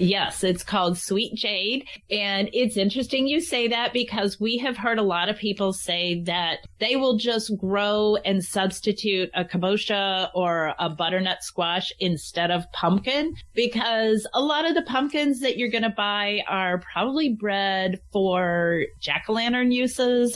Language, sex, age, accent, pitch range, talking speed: English, female, 30-49, American, 185-230 Hz, 155 wpm